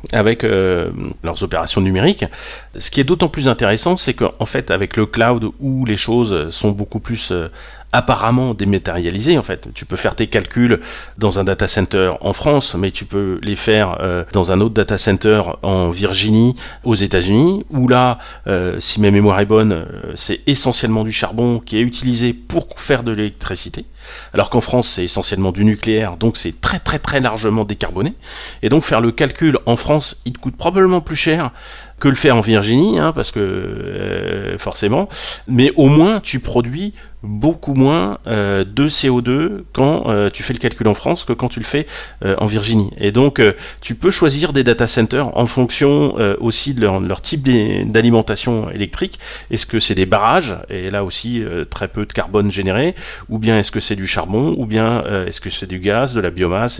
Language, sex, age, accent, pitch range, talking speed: French, male, 40-59, French, 100-125 Hz, 200 wpm